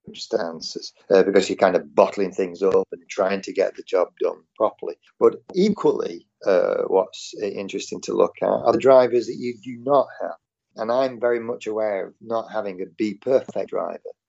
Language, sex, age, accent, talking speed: English, male, 40-59, British, 185 wpm